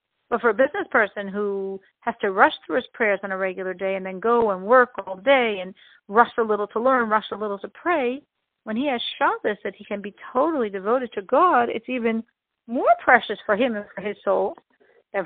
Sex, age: female, 60-79